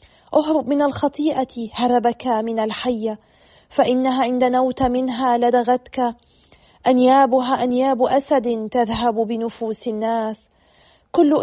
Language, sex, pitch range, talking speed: Arabic, female, 225-255 Hz, 95 wpm